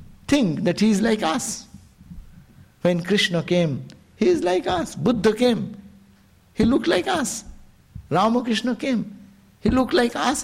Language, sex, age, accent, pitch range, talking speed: English, male, 60-79, Indian, 160-215 Hz, 145 wpm